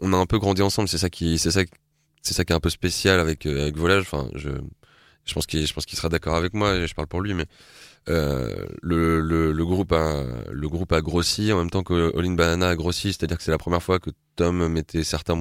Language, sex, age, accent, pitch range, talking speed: French, male, 20-39, French, 75-90 Hz, 255 wpm